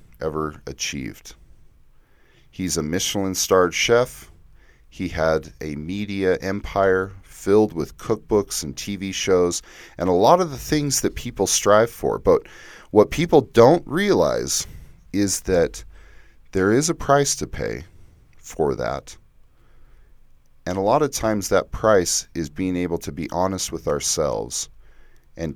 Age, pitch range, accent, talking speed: 30-49, 75-100 Hz, American, 135 wpm